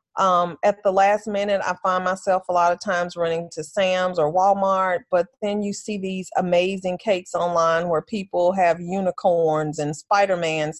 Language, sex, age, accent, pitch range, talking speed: English, female, 30-49, American, 175-210 Hz, 170 wpm